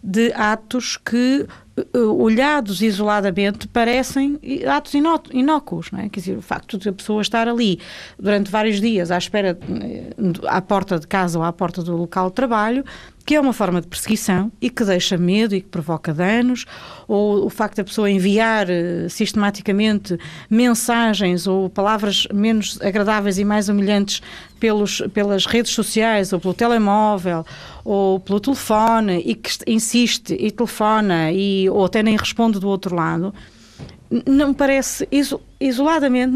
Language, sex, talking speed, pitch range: Portuguese, female, 150 wpm, 190-250 Hz